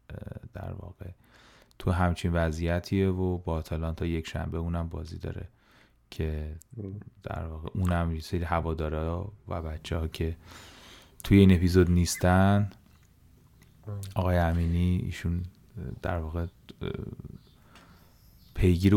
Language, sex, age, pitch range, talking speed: Persian, male, 30-49, 85-100 Hz, 110 wpm